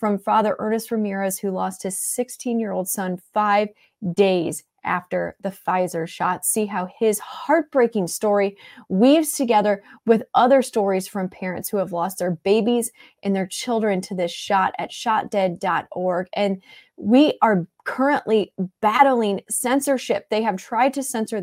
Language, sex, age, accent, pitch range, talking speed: English, female, 30-49, American, 195-255 Hz, 150 wpm